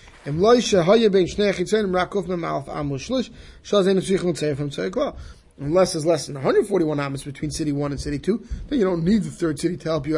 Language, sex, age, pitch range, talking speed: English, male, 30-49, 155-200 Hz, 135 wpm